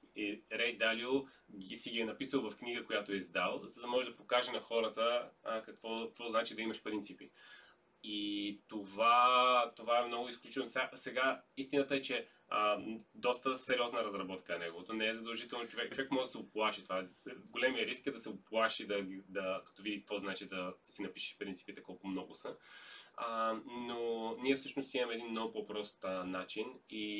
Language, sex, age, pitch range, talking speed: Bulgarian, male, 20-39, 105-130 Hz, 180 wpm